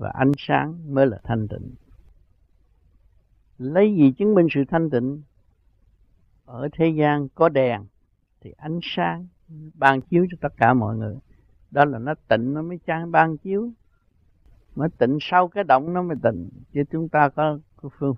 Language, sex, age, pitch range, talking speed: Vietnamese, male, 60-79, 105-160 Hz, 170 wpm